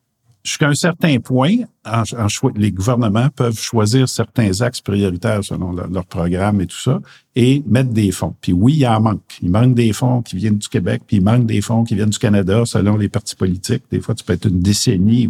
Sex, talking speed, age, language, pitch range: male, 225 wpm, 50-69, French, 105-130 Hz